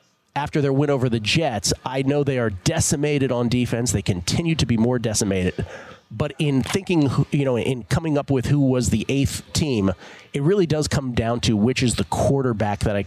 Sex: male